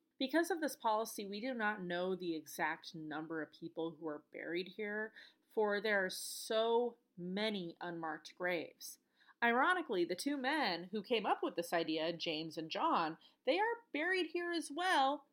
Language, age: English, 30-49